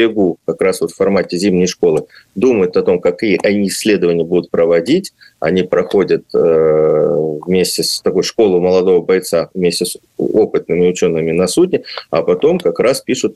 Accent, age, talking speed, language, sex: native, 20-39, 155 wpm, Russian, male